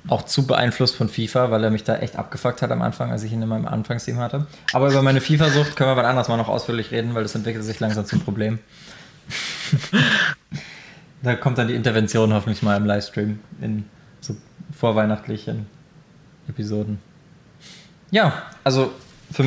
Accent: German